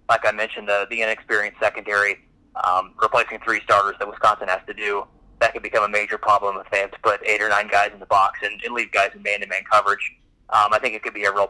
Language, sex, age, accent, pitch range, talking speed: English, male, 30-49, American, 100-120 Hz, 255 wpm